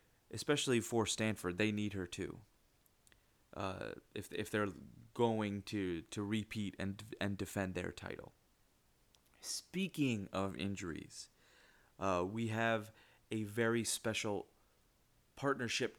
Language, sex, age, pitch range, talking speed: English, male, 30-49, 100-115 Hz, 115 wpm